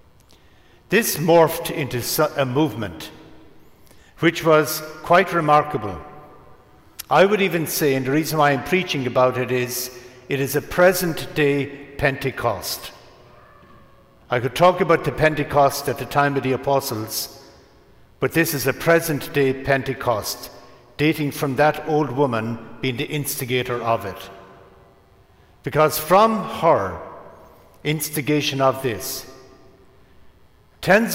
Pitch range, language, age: 125-155 Hz, English, 60-79